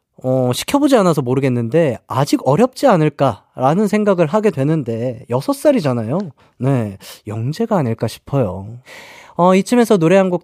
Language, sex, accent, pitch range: Korean, male, native, 120-175 Hz